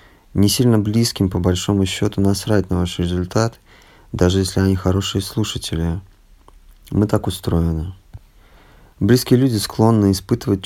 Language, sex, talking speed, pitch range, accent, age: Russian, male, 125 wpm, 90-105 Hz, native, 30-49